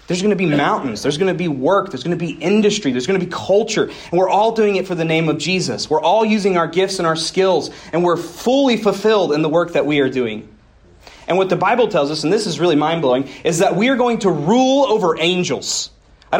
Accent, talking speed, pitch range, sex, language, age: American, 255 wpm, 160-215 Hz, male, English, 30-49